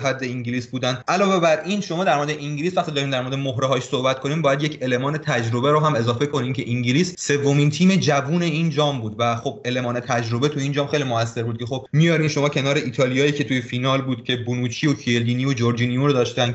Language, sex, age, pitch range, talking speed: Persian, male, 30-49, 125-150 Hz, 225 wpm